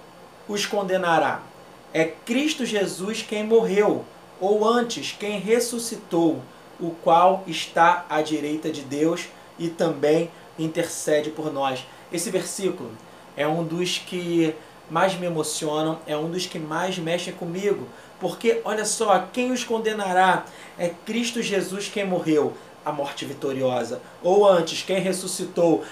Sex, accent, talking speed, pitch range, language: male, Brazilian, 130 wpm, 165-205 Hz, Portuguese